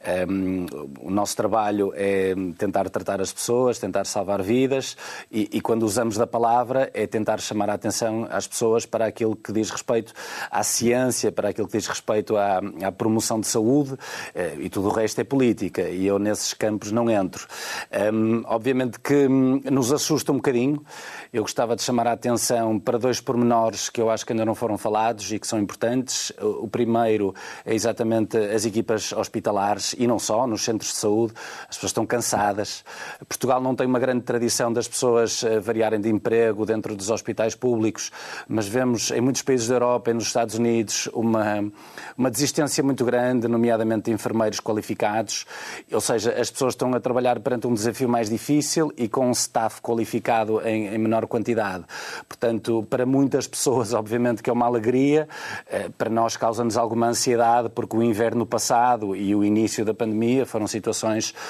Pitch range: 110-125 Hz